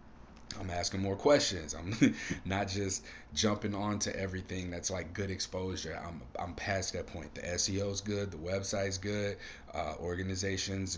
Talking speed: 165 wpm